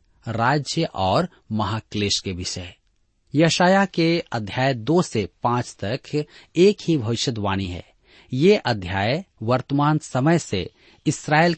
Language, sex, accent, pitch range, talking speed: Hindi, male, native, 105-160 Hz, 115 wpm